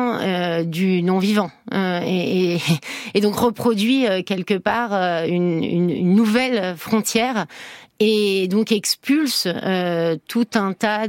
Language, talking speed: French, 130 wpm